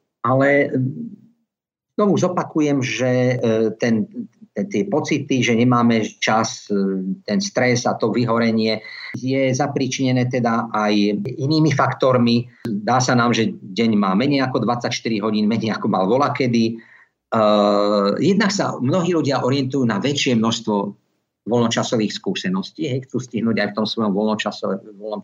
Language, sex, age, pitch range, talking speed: Slovak, male, 50-69, 110-135 Hz, 125 wpm